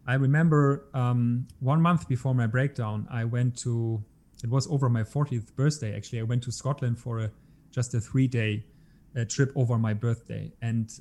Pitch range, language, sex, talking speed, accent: 115-140 Hz, English, male, 185 wpm, German